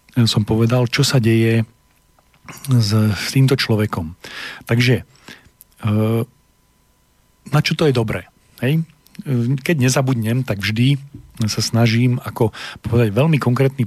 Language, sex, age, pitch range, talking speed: Slovak, male, 40-59, 105-130 Hz, 110 wpm